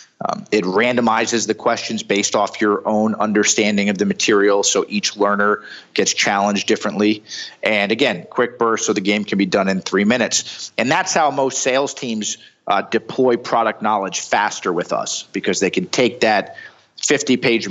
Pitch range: 100-120 Hz